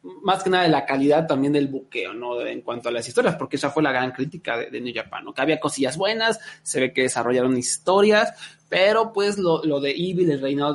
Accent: Mexican